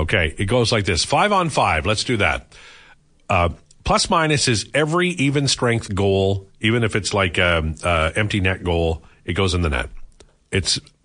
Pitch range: 90-125 Hz